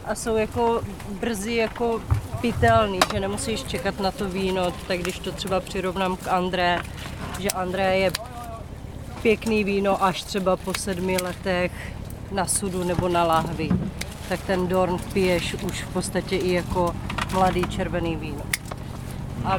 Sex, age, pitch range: female, 30-49, 170-205 Hz